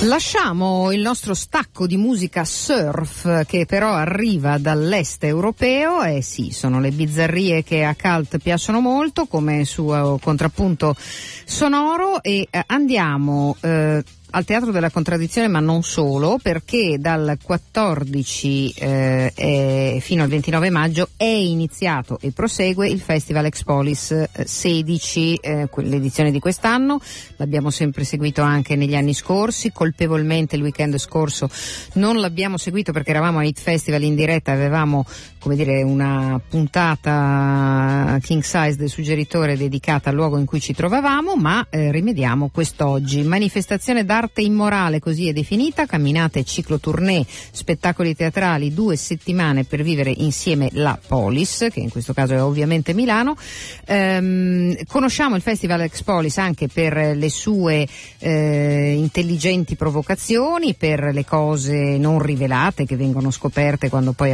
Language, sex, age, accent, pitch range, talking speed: Italian, female, 50-69, native, 145-185 Hz, 140 wpm